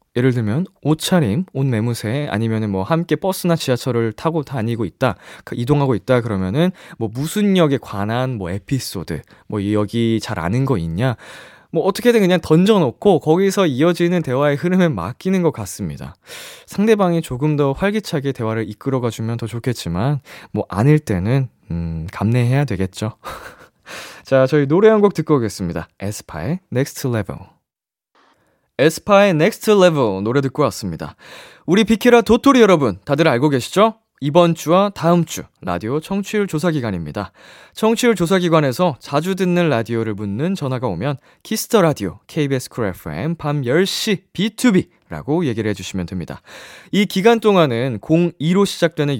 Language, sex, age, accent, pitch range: Korean, male, 20-39, native, 115-185 Hz